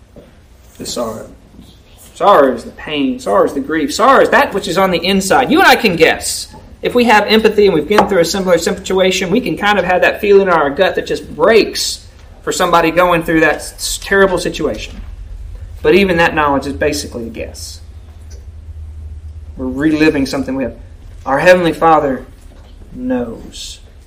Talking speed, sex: 175 wpm, male